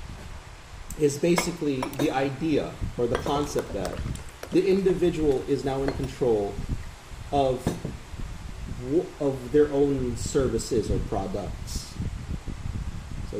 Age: 30-49